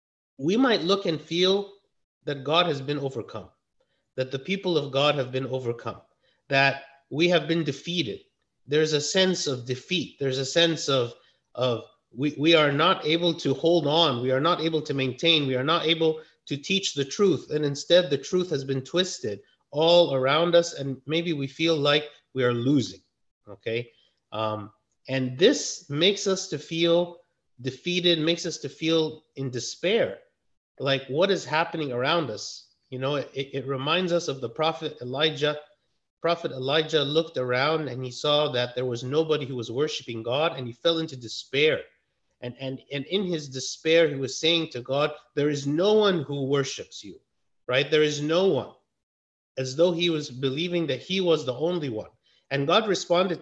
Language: English